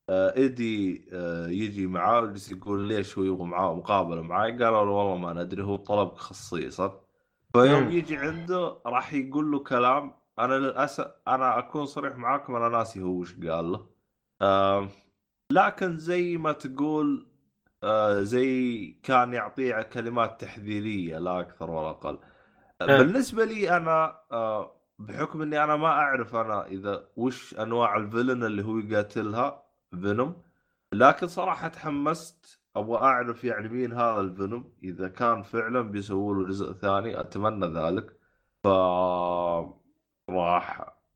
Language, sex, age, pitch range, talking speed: Arabic, male, 20-39, 90-130 Hz, 130 wpm